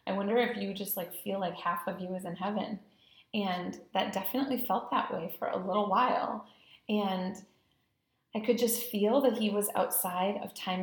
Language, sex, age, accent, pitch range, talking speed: English, female, 30-49, American, 185-225 Hz, 195 wpm